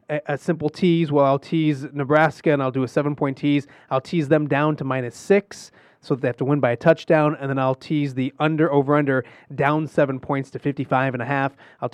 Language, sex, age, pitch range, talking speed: English, male, 30-49, 135-165 Hz, 225 wpm